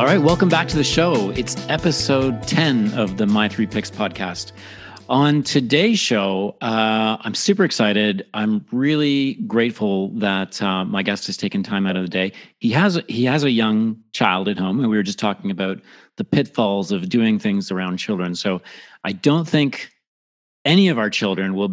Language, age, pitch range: English, 40-59, 105-145 Hz